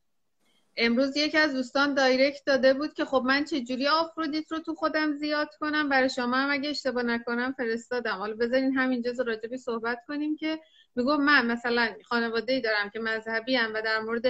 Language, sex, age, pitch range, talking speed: Persian, female, 30-49, 220-270 Hz, 180 wpm